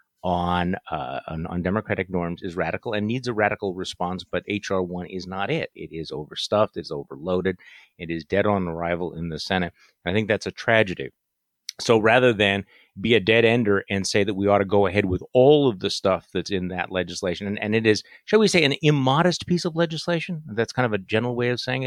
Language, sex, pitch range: English, male, 95-115 Hz